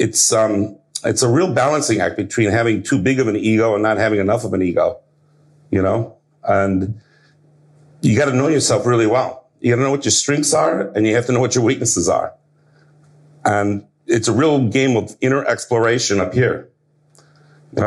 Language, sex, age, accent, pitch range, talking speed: English, male, 50-69, American, 110-150 Hz, 200 wpm